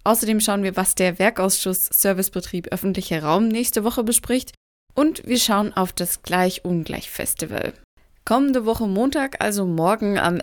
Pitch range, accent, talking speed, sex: 175-220 Hz, German, 140 wpm, female